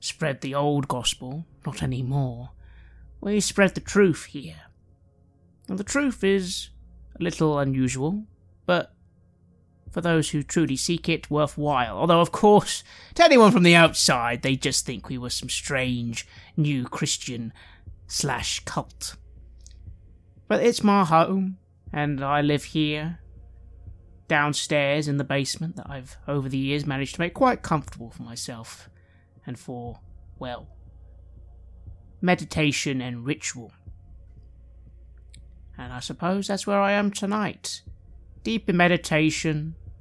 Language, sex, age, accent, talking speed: English, male, 30-49, British, 130 wpm